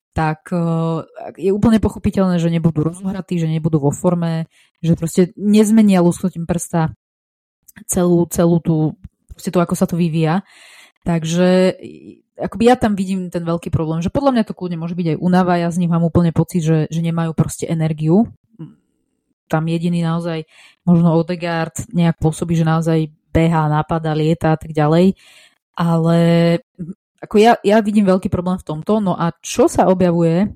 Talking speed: 160 wpm